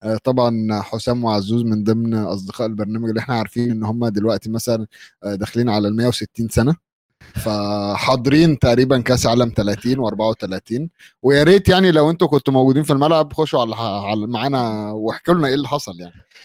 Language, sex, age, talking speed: Arabic, male, 20-39, 155 wpm